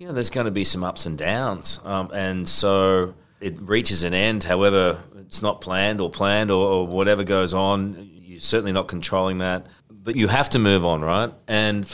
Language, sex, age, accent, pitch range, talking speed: English, male, 30-49, Australian, 90-105 Hz, 205 wpm